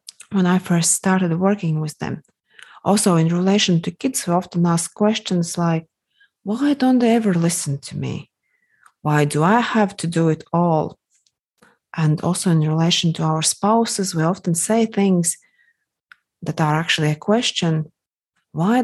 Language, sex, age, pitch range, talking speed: English, female, 30-49, 160-210 Hz, 155 wpm